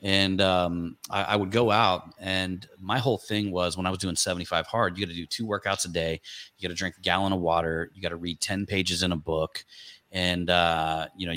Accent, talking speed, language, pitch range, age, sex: American, 230 wpm, English, 90-100 Hz, 30-49, male